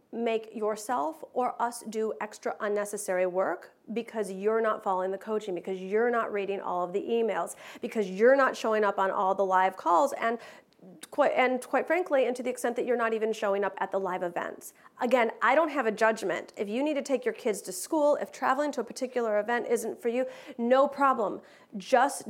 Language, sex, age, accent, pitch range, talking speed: English, female, 40-59, American, 215-280 Hz, 210 wpm